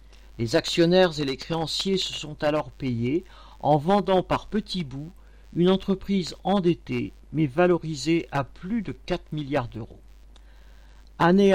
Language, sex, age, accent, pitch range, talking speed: French, male, 50-69, French, 130-190 Hz, 135 wpm